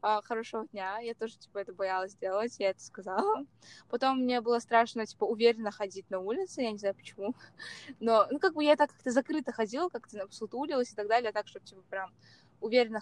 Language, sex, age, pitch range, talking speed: Russian, female, 20-39, 205-250 Hz, 205 wpm